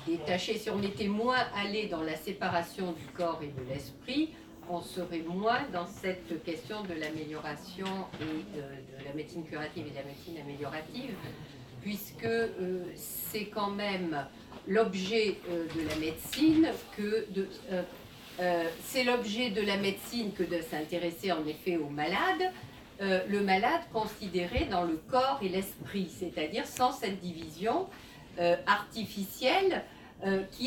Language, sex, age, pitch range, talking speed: French, female, 50-69, 175-230 Hz, 150 wpm